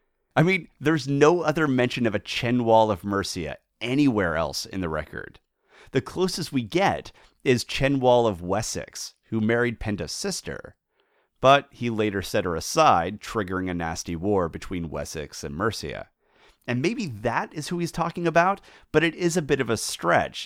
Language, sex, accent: English, male, American